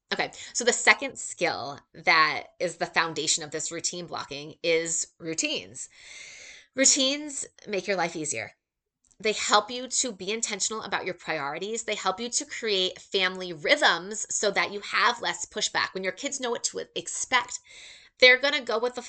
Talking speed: 175 wpm